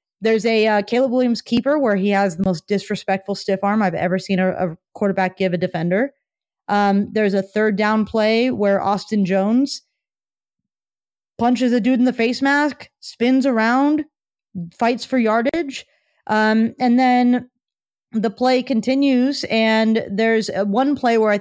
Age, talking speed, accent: 30-49, 155 wpm, American